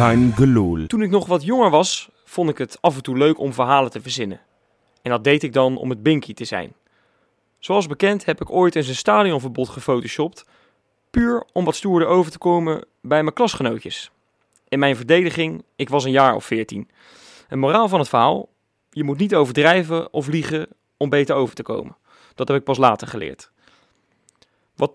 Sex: male